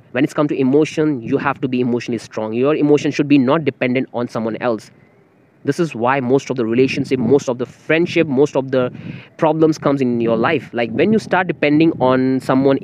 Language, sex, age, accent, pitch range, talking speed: English, male, 20-39, Indian, 115-140 Hz, 215 wpm